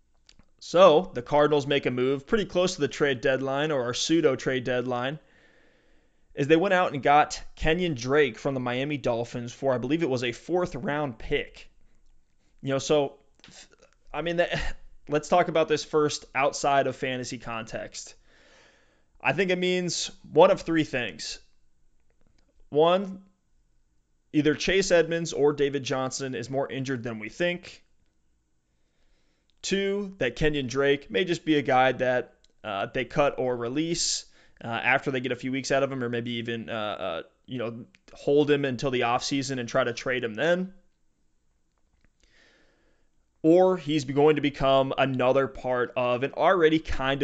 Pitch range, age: 125-155 Hz, 20-39